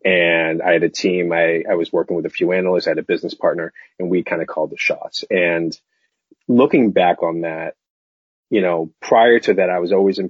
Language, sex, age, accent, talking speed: English, male, 30-49, American, 225 wpm